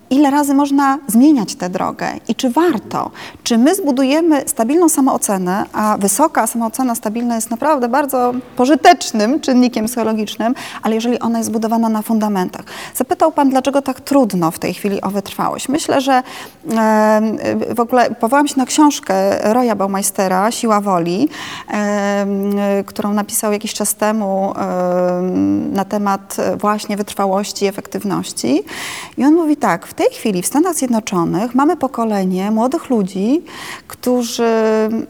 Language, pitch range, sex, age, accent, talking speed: Polish, 210-270 Hz, female, 20-39, native, 135 wpm